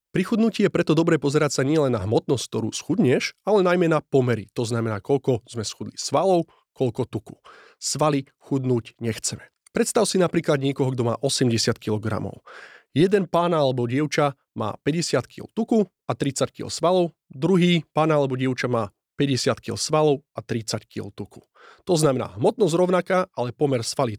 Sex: male